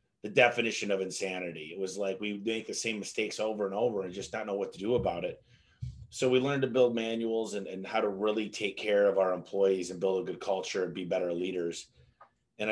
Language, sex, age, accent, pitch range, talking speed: English, male, 30-49, American, 95-120 Hz, 235 wpm